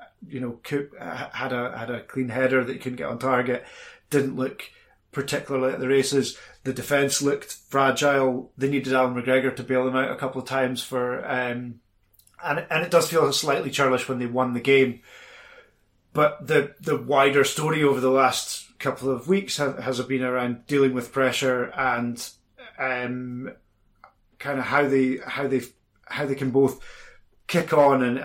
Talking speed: 180 wpm